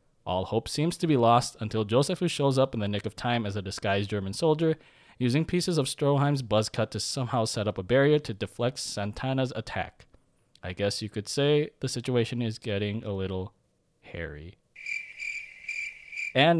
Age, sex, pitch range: 20-39, male, 100-140 Hz